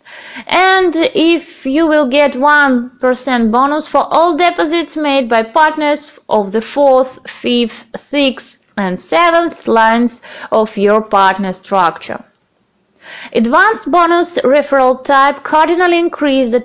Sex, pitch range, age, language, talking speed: female, 230-315 Hz, 20-39, Russian, 120 wpm